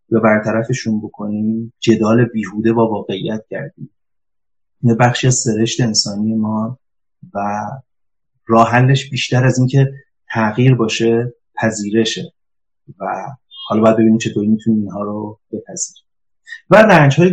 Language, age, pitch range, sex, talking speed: Persian, 30-49, 110-140 Hz, male, 115 wpm